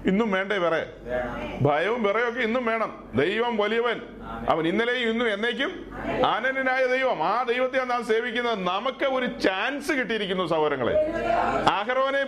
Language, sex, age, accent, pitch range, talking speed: Malayalam, male, 40-59, native, 195-245 Hz, 110 wpm